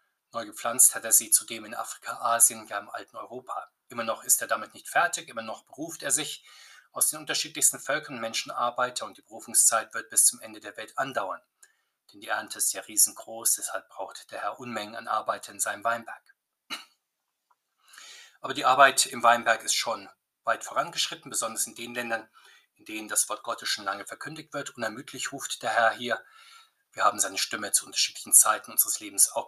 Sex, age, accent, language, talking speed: male, 20-39, German, German, 190 wpm